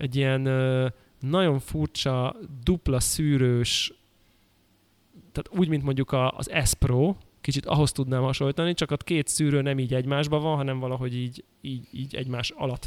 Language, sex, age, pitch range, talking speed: Hungarian, male, 20-39, 120-150 Hz, 145 wpm